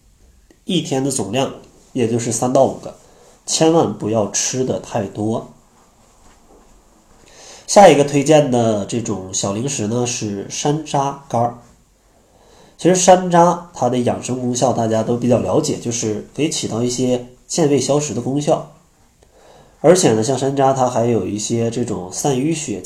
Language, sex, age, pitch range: Chinese, male, 20-39, 110-150 Hz